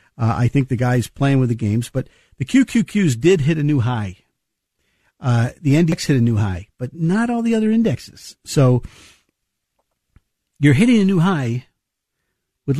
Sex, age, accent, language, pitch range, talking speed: male, 50-69, American, English, 120-165 Hz, 175 wpm